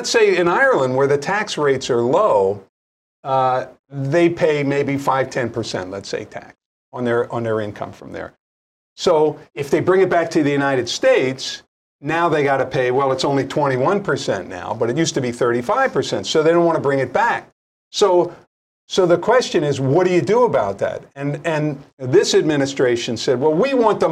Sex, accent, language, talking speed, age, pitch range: male, American, English, 195 wpm, 50-69, 135-200 Hz